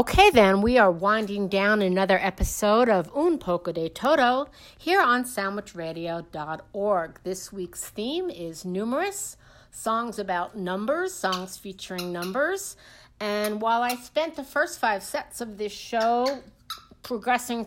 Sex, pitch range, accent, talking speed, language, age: female, 195-255 Hz, American, 130 wpm, English, 50-69